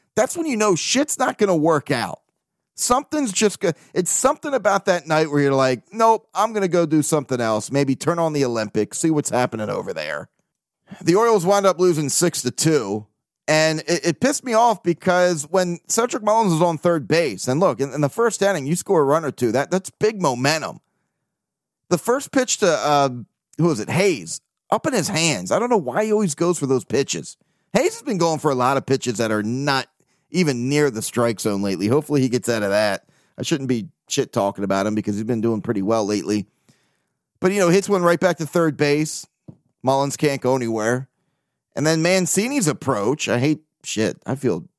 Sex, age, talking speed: male, 30-49, 215 wpm